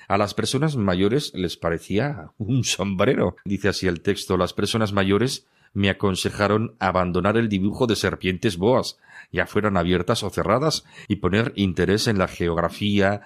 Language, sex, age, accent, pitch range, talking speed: Spanish, male, 40-59, Spanish, 90-110 Hz, 155 wpm